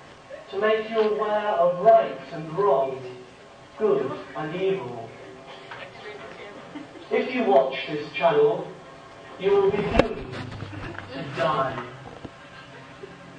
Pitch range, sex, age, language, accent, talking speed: 140-220 Hz, male, 40-59, English, British, 100 wpm